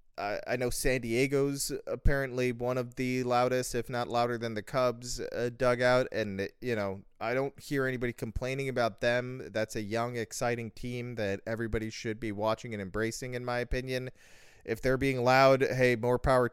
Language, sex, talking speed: English, male, 180 wpm